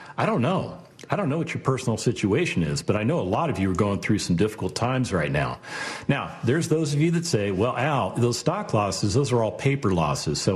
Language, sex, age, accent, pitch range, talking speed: English, male, 50-69, American, 100-150 Hz, 250 wpm